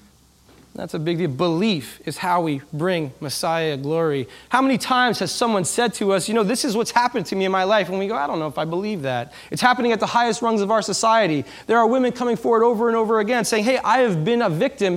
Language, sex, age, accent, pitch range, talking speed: English, male, 20-39, American, 145-230 Hz, 260 wpm